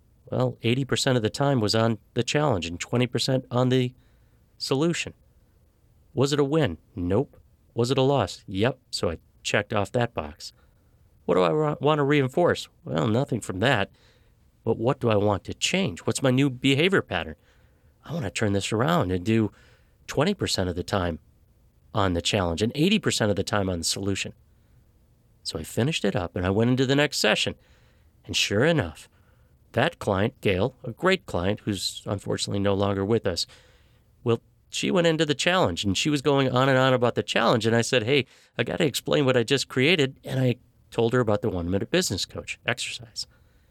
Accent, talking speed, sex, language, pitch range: American, 190 wpm, male, English, 100-135 Hz